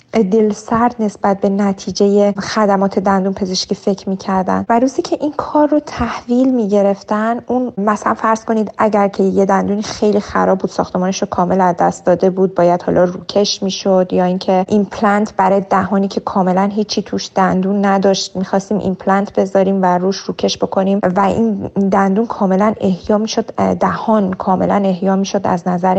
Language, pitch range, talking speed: Persian, 195-245 Hz, 165 wpm